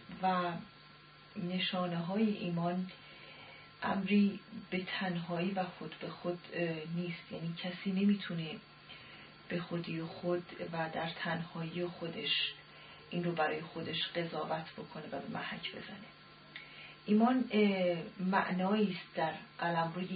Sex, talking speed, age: female, 115 wpm, 40-59